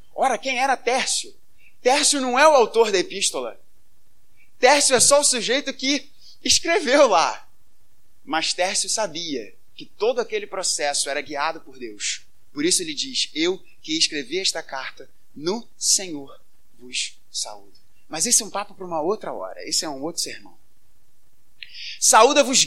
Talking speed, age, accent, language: 155 wpm, 20-39, Brazilian, Portuguese